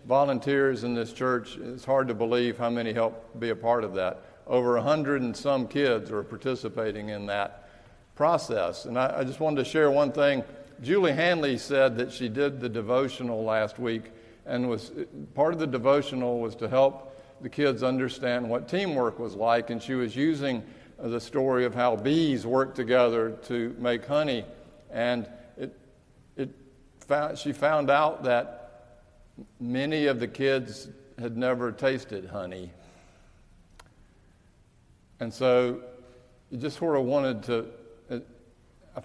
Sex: male